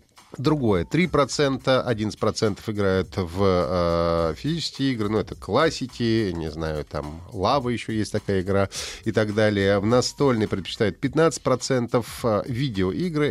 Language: Russian